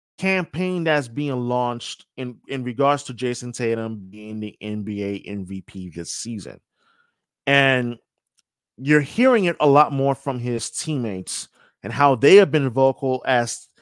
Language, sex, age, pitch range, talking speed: English, male, 30-49, 120-155 Hz, 145 wpm